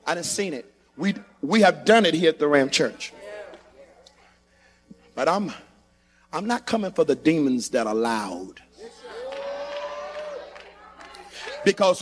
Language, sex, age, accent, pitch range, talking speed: English, male, 50-69, American, 195-290 Hz, 130 wpm